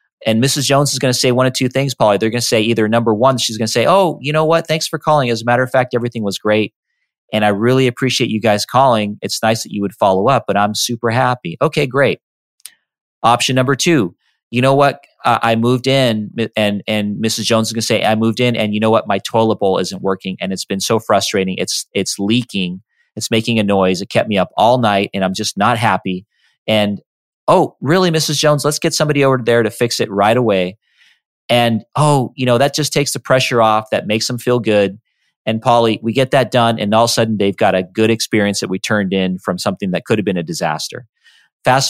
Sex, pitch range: male, 105-130 Hz